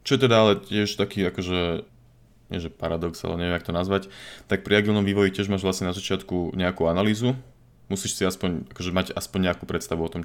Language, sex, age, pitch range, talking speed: Slovak, male, 20-39, 90-105 Hz, 210 wpm